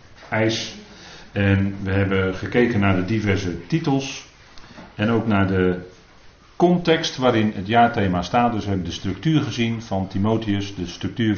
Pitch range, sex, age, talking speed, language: 90-115 Hz, male, 40-59, 140 wpm, Dutch